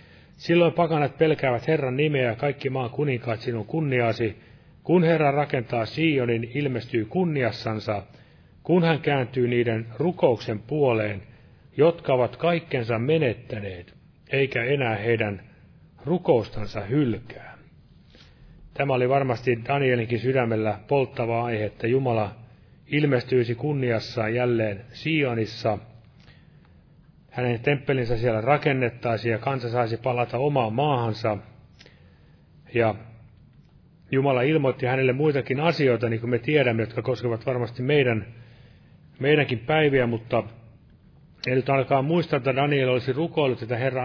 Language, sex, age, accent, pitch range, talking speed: Finnish, male, 30-49, native, 115-140 Hz, 110 wpm